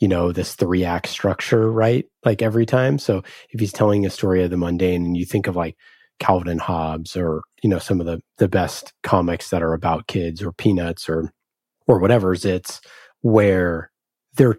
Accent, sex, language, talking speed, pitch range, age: American, male, English, 195 wpm, 85-105 Hz, 30-49